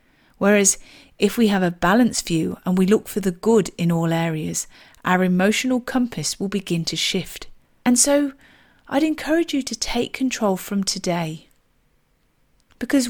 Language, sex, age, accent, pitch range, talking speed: English, female, 40-59, British, 180-245 Hz, 155 wpm